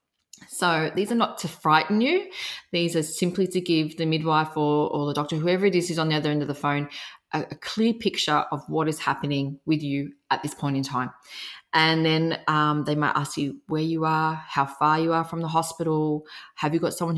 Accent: Australian